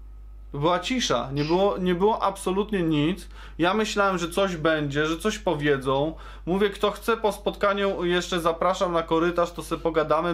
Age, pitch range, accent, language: 20-39, 150-200 Hz, native, Polish